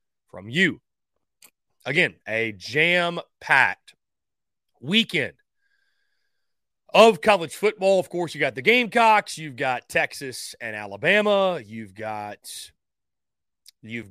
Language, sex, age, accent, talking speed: English, male, 30-49, American, 100 wpm